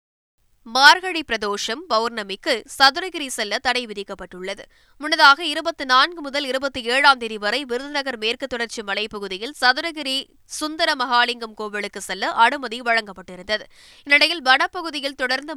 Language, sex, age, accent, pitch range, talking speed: Tamil, female, 20-39, native, 215-275 Hz, 110 wpm